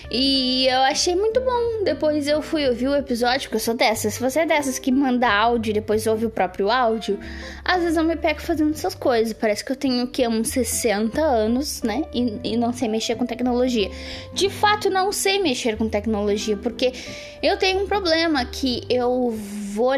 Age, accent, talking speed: 10-29, Brazilian, 205 wpm